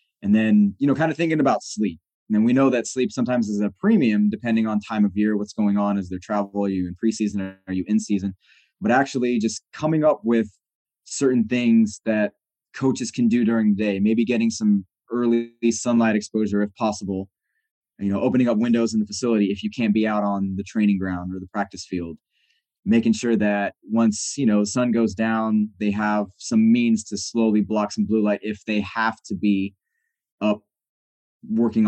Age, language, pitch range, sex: 20-39, English, 100-115 Hz, male